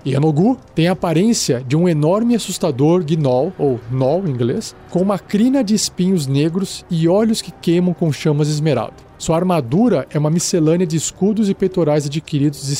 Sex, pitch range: male, 145-190 Hz